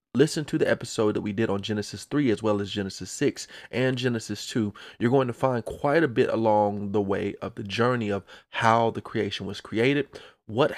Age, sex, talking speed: 30-49, male, 210 wpm